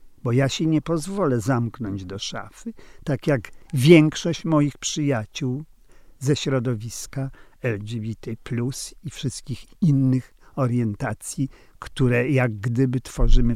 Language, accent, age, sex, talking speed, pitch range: Polish, native, 50-69, male, 105 wpm, 120-150 Hz